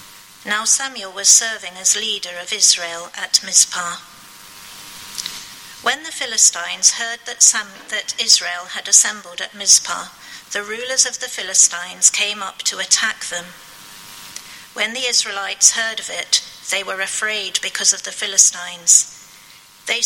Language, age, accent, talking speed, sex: English, 50-69, British, 135 wpm, female